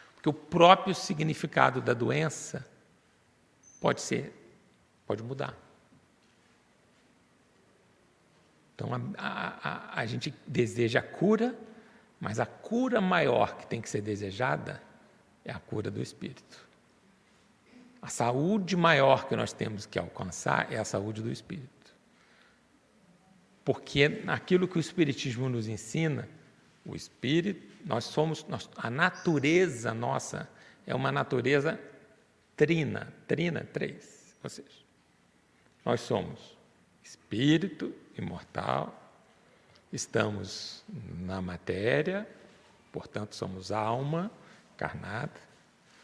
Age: 60-79